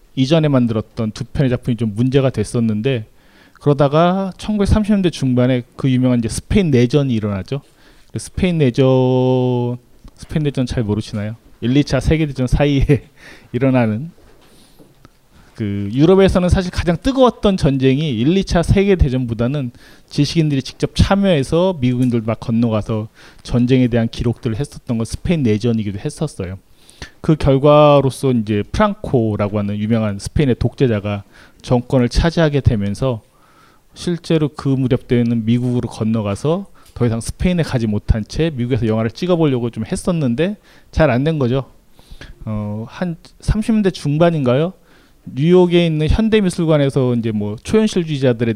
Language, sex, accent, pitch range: Korean, male, native, 115-160 Hz